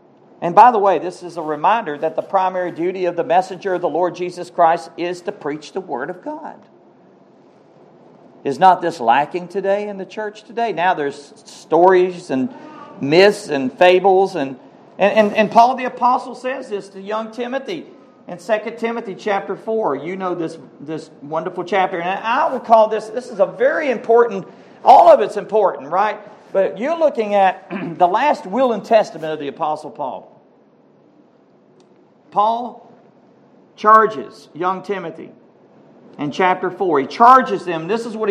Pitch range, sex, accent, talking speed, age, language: 175-240 Hz, male, American, 170 wpm, 50-69, English